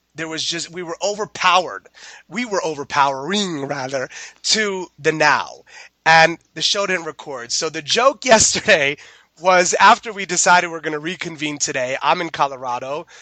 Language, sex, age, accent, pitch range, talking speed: English, male, 30-49, American, 150-200 Hz, 155 wpm